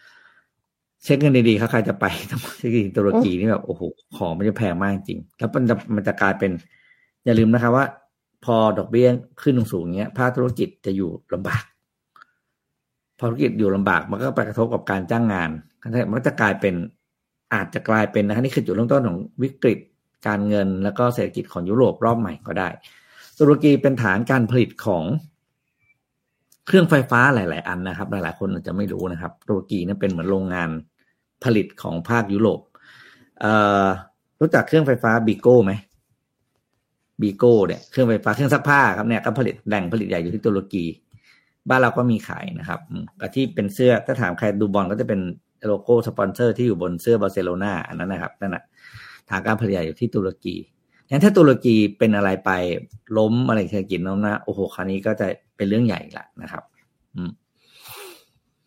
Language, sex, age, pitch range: Thai, male, 50-69, 100-125 Hz